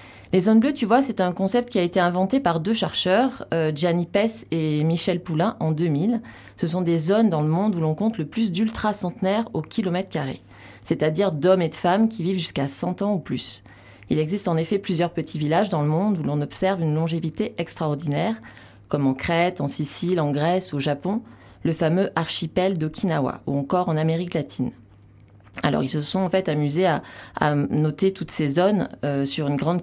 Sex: female